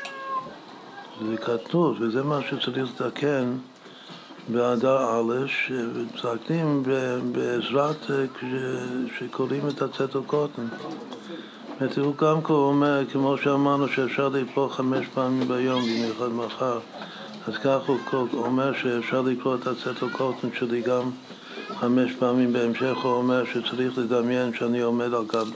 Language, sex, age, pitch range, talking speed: Hebrew, male, 60-79, 115-130 Hz, 115 wpm